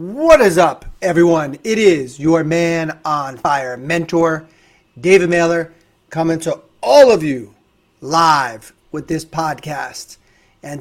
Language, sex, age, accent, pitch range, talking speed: English, male, 30-49, American, 135-160 Hz, 130 wpm